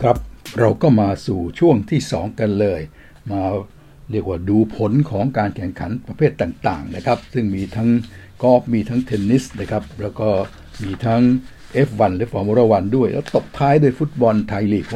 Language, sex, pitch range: Thai, male, 100-120 Hz